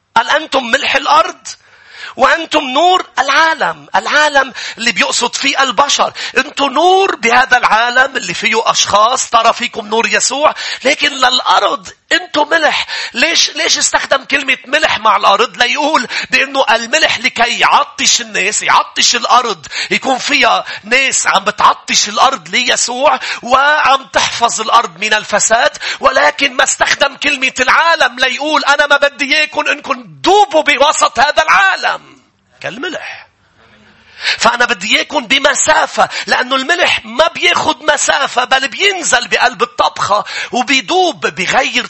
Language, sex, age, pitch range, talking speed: English, male, 40-59, 245-305 Hz, 120 wpm